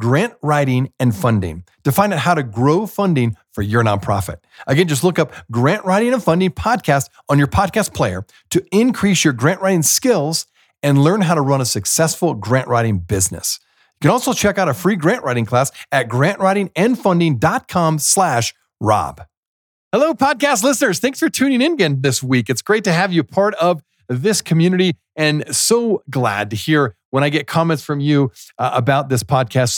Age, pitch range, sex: 40-59, 120-185 Hz, male